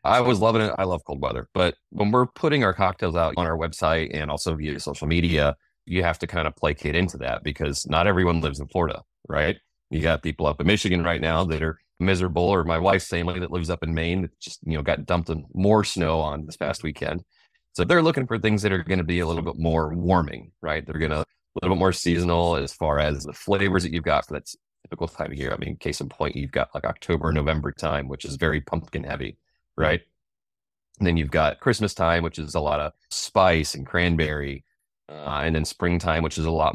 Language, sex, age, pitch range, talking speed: English, male, 30-49, 75-90 Hz, 240 wpm